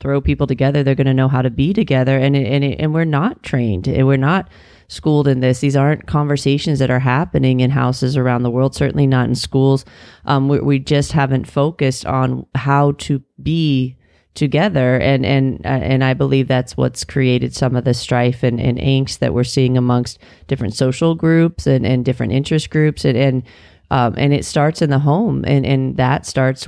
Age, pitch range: 30-49, 130-150 Hz